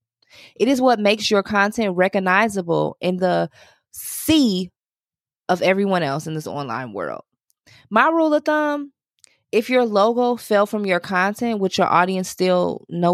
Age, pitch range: 20-39, 170-230 Hz